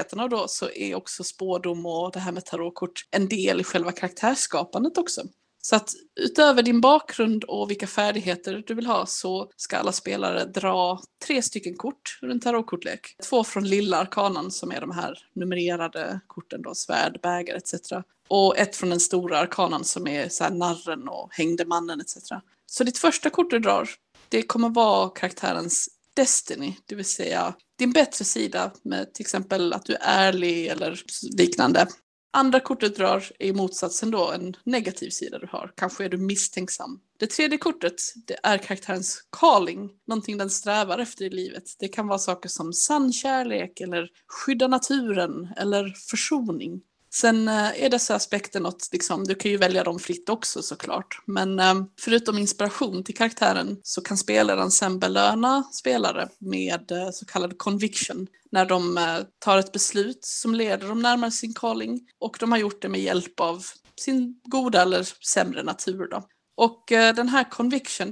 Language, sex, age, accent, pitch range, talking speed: English, female, 20-39, Swedish, 185-235 Hz, 165 wpm